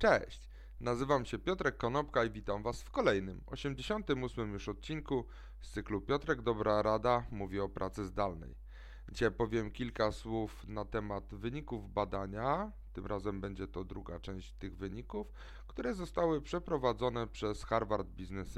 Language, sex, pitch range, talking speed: Polish, male, 100-135 Hz, 140 wpm